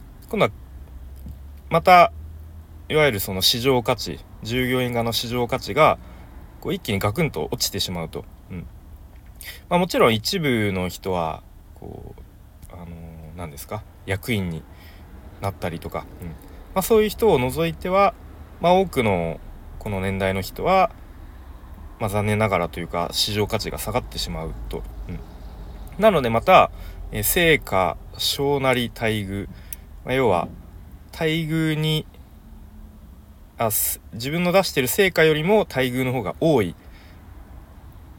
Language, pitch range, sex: Japanese, 80-125 Hz, male